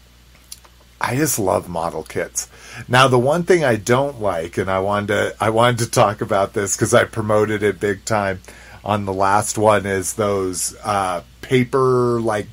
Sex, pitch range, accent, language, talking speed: male, 105-135 Hz, American, English, 175 wpm